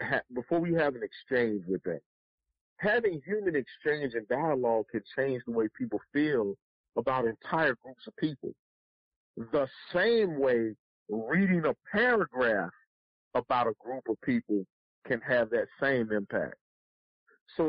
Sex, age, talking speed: male, 50-69, 135 wpm